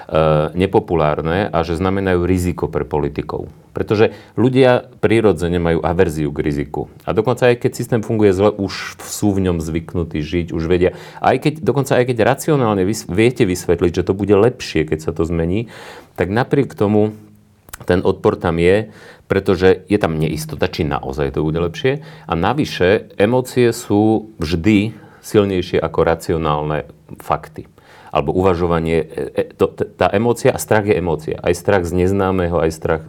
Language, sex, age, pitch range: Slovak, male, 40-59, 85-110 Hz